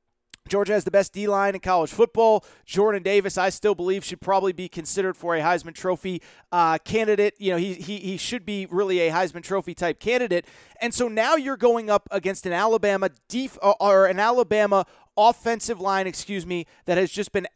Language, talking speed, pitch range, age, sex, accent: English, 200 wpm, 175-215 Hz, 30-49, male, American